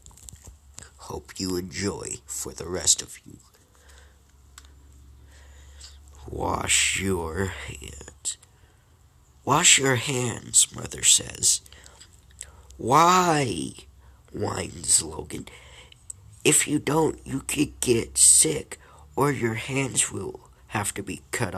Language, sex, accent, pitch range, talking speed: English, male, American, 75-110 Hz, 90 wpm